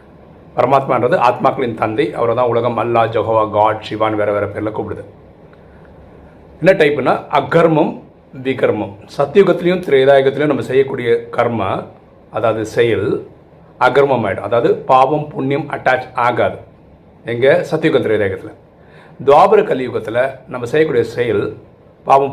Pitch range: 115-170 Hz